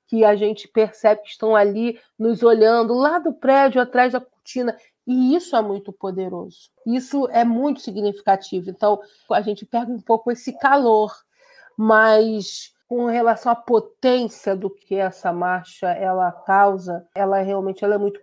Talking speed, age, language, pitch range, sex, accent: 160 wpm, 40-59, Portuguese, 200-245 Hz, female, Brazilian